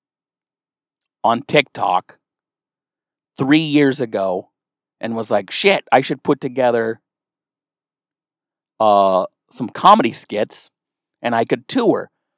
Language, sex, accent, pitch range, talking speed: English, male, American, 135-175 Hz, 100 wpm